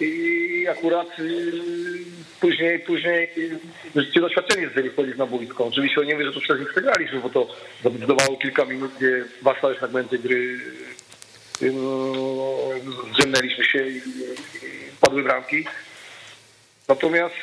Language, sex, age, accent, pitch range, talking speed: Polish, male, 40-59, native, 130-165 Hz, 115 wpm